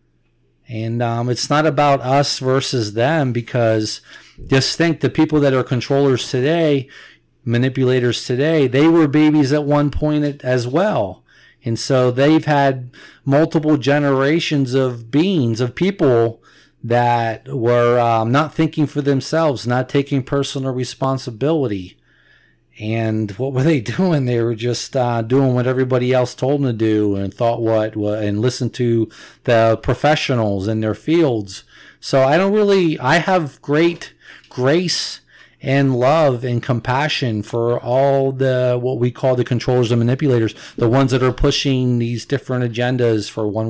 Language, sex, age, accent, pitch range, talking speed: English, male, 40-59, American, 115-145 Hz, 150 wpm